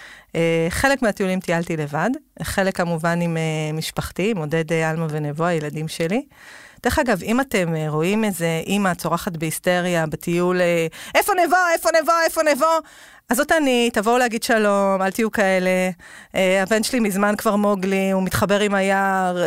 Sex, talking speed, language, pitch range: female, 150 wpm, Hebrew, 175-215 Hz